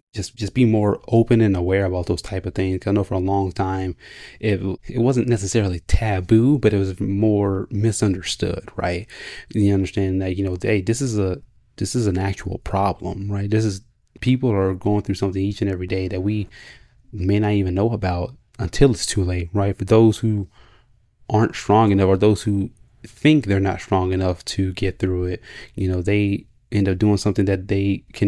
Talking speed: 205 wpm